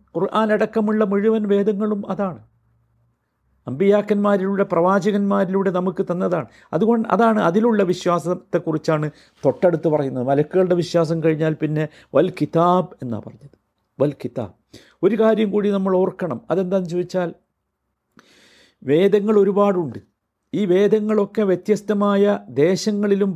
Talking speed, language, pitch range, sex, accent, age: 90 wpm, Malayalam, 180-235 Hz, male, native, 50-69